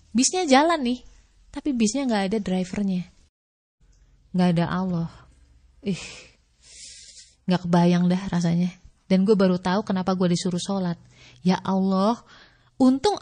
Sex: female